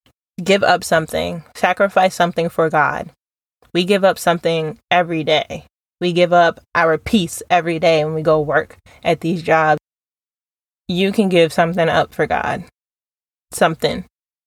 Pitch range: 165-195 Hz